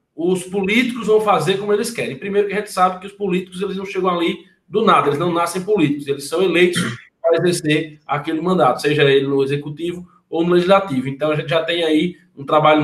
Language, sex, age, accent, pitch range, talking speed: Portuguese, male, 20-39, Brazilian, 150-195 Hz, 220 wpm